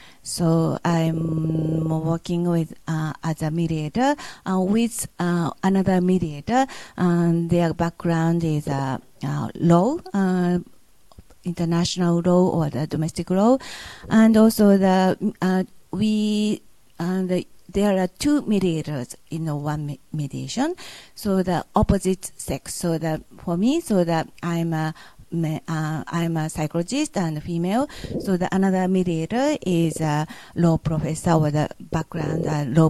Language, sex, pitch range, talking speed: English, female, 155-200 Hz, 140 wpm